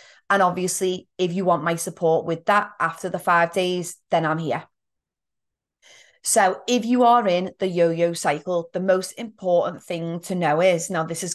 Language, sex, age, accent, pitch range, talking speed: English, female, 30-49, British, 165-190 Hz, 180 wpm